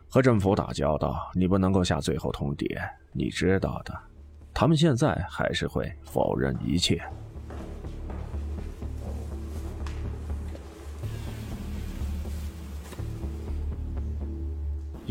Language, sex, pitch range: Chinese, male, 80-105 Hz